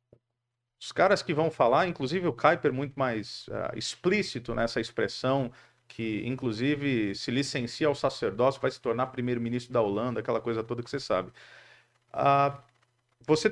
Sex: male